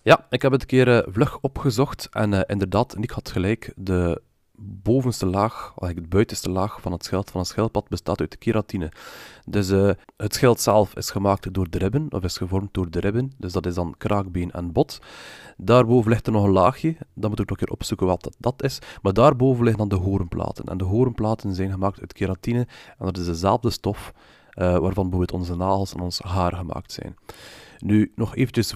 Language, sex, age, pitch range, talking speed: Dutch, male, 30-49, 95-115 Hz, 210 wpm